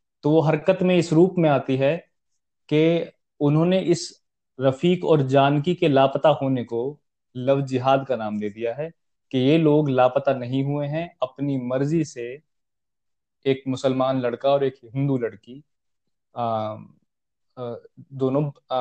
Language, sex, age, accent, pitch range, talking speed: Hindi, male, 20-39, native, 130-160 Hz, 140 wpm